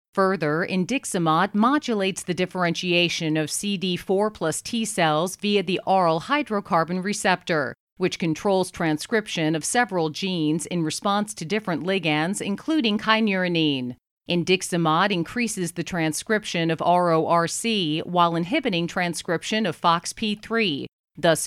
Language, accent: English, American